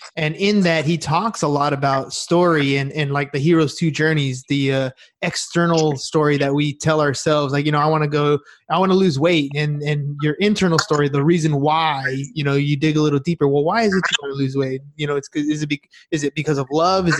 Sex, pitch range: male, 145-175 Hz